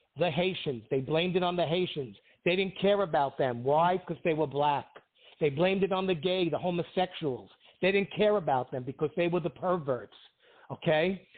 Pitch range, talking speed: 155-195 Hz, 195 wpm